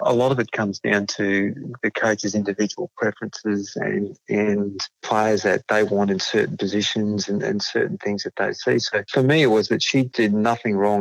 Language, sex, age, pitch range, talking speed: English, male, 40-59, 100-115 Hz, 200 wpm